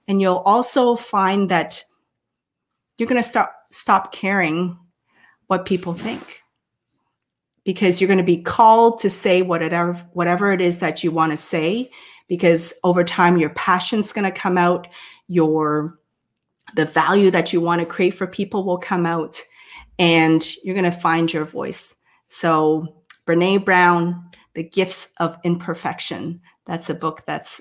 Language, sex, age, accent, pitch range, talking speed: English, female, 30-49, American, 170-200 Hz, 155 wpm